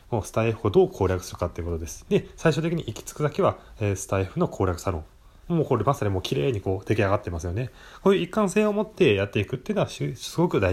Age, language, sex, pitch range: 20-39, Japanese, male, 95-155 Hz